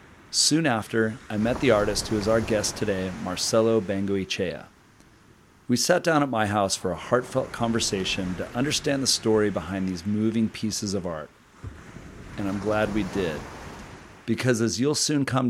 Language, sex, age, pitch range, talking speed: English, male, 40-59, 100-115 Hz, 165 wpm